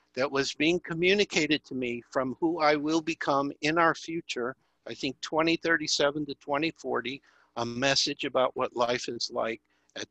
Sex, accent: male, American